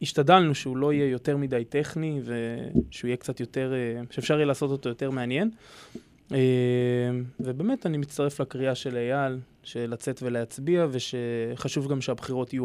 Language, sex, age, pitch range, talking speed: Hebrew, male, 20-39, 120-135 Hz, 140 wpm